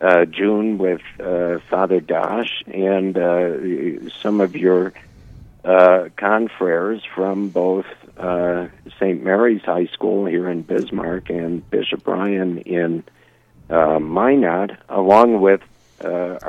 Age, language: 60-79, English